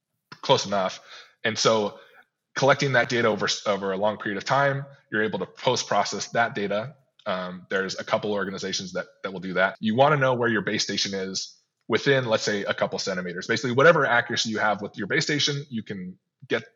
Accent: American